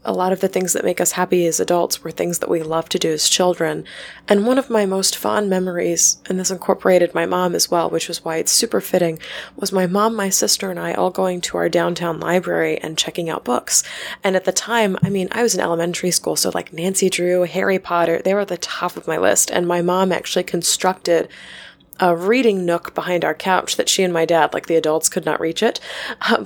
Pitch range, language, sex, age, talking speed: 175-215 Hz, English, female, 20-39, 240 wpm